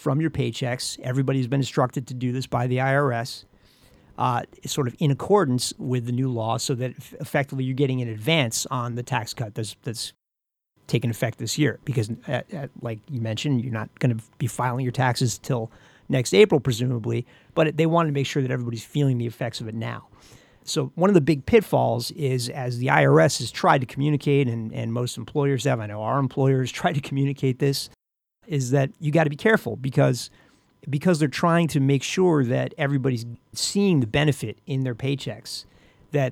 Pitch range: 120-145 Hz